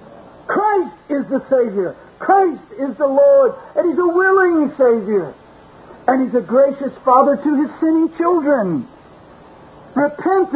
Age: 50-69